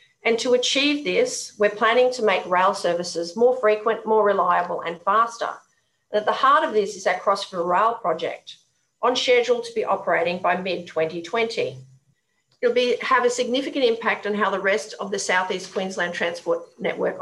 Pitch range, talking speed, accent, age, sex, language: 190-280 Hz, 180 wpm, Australian, 40-59, female, English